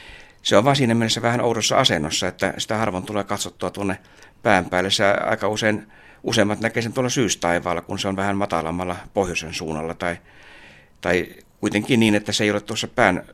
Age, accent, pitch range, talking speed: 60-79, native, 90-105 Hz, 180 wpm